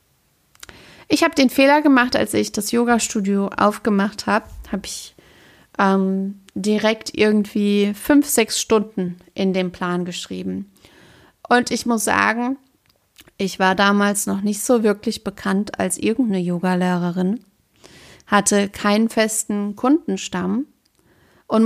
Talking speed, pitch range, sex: 120 wpm, 190-235 Hz, female